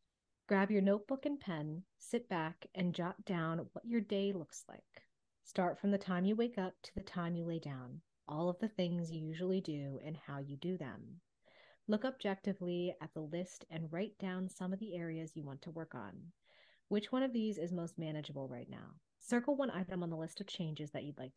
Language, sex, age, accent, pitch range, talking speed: English, female, 30-49, American, 160-205 Hz, 215 wpm